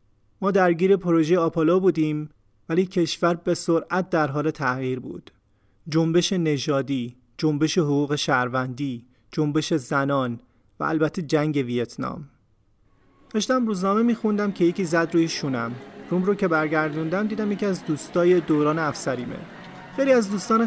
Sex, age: male, 30-49